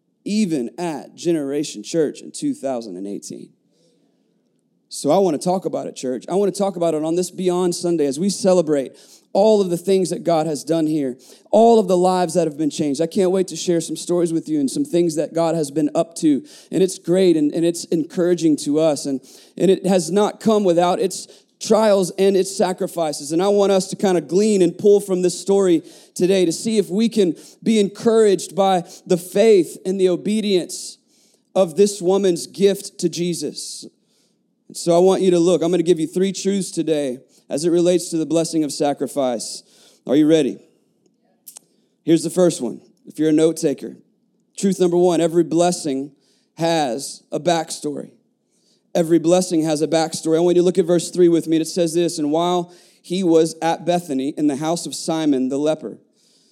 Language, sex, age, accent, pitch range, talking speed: English, male, 30-49, American, 160-190 Hz, 200 wpm